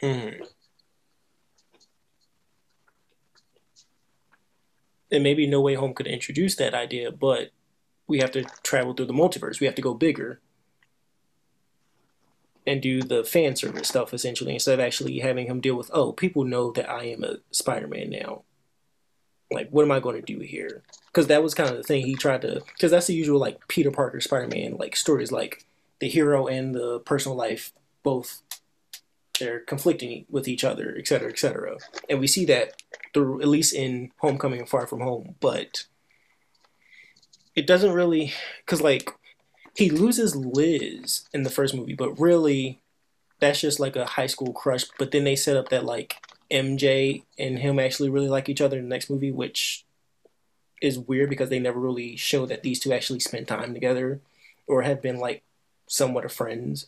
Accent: American